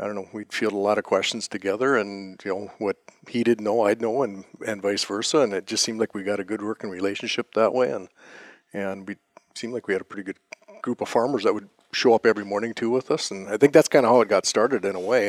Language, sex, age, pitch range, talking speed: English, male, 50-69, 100-115 Hz, 280 wpm